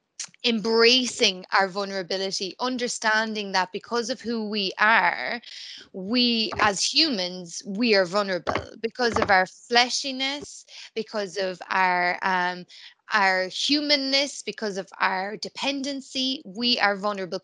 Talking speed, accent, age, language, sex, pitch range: 115 wpm, Irish, 20-39, English, female, 195-235 Hz